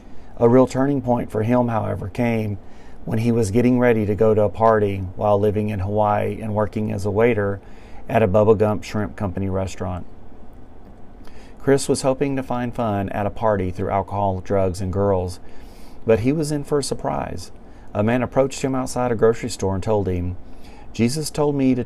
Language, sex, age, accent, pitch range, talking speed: English, male, 40-59, American, 100-120 Hz, 190 wpm